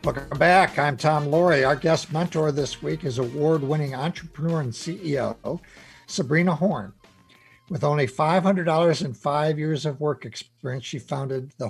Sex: male